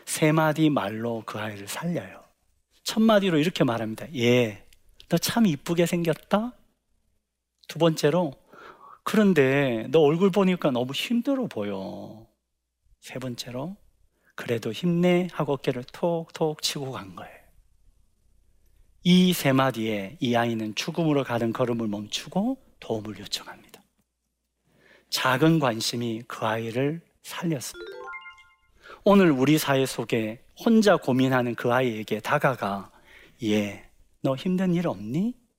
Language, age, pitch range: Korean, 40-59, 115-175 Hz